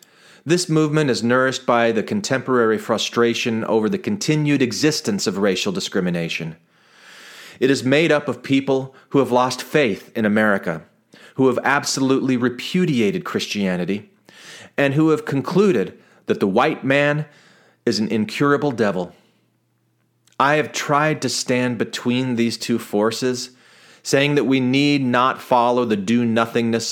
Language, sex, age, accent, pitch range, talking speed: English, male, 30-49, American, 115-145 Hz, 135 wpm